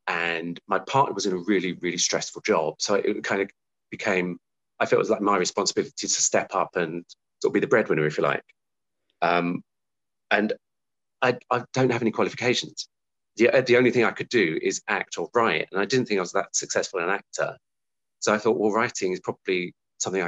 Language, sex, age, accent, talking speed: English, male, 30-49, British, 215 wpm